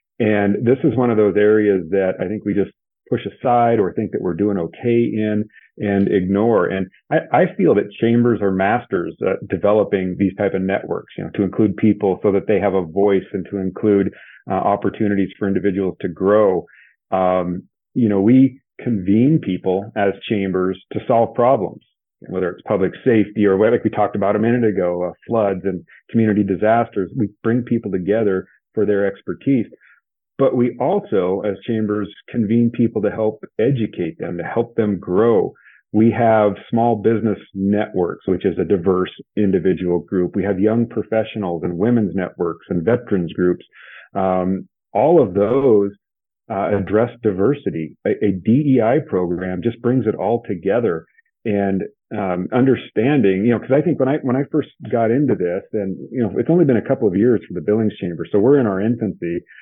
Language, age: English, 40-59